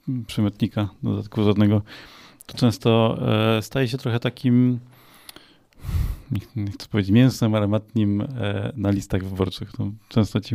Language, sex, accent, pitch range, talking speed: Polish, male, native, 105-120 Hz, 110 wpm